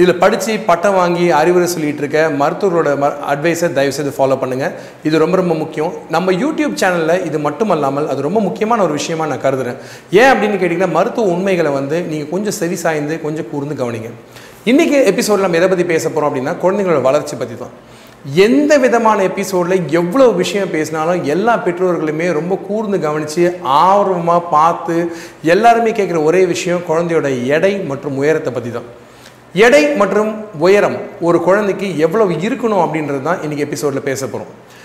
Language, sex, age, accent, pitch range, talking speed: Tamil, male, 40-59, native, 150-200 Hz, 150 wpm